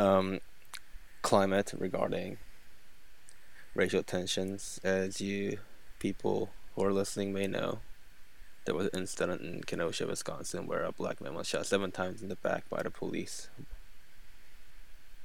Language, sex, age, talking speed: English, male, 20-39, 135 wpm